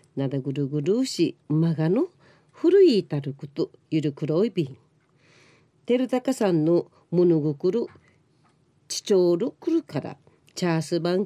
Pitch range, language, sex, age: 145-190 Hz, Japanese, female, 40-59